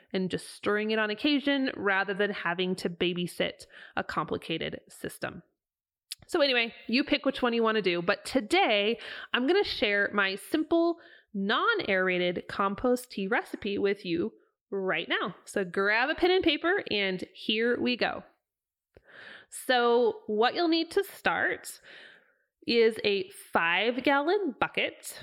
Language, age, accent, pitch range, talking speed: English, 20-39, American, 195-275 Hz, 145 wpm